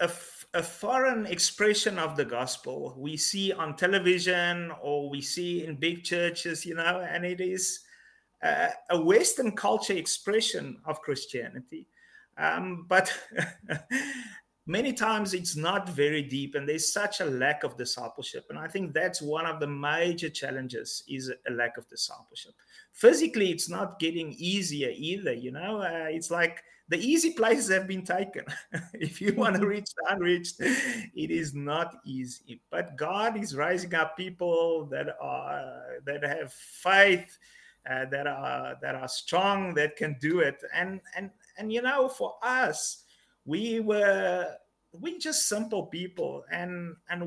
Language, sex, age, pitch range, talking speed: English, male, 30-49, 160-205 Hz, 155 wpm